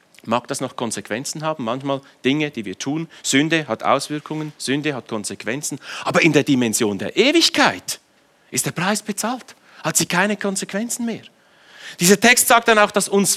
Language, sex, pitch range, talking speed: German, male, 135-195 Hz, 170 wpm